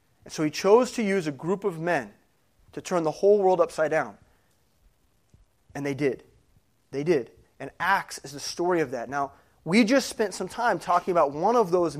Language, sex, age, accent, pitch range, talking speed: English, male, 30-49, American, 160-215 Hz, 200 wpm